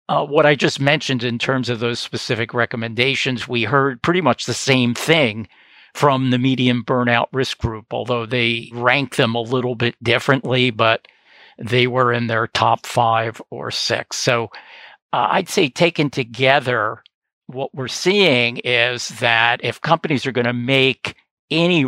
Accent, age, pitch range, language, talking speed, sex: American, 50-69, 115-135 Hz, English, 160 wpm, male